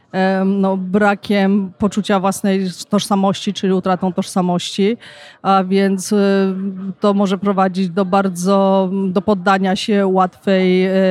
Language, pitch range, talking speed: Polish, 185-200 Hz, 105 wpm